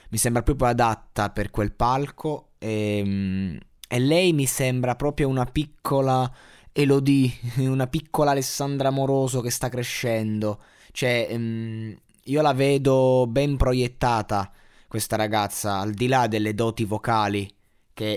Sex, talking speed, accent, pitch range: male, 125 wpm, native, 105-130 Hz